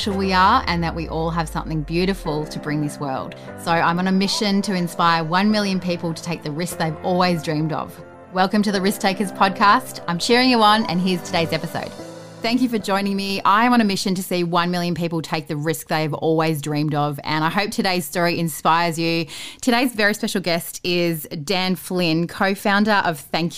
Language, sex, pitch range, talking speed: English, female, 160-195 Hz, 215 wpm